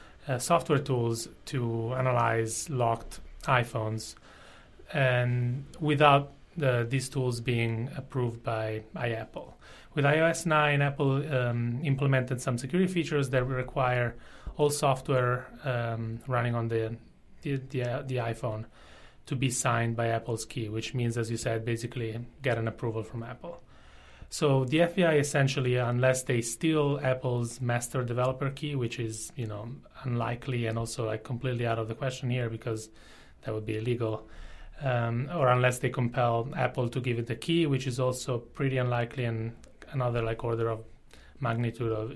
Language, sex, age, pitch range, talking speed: English, male, 30-49, 115-130 Hz, 155 wpm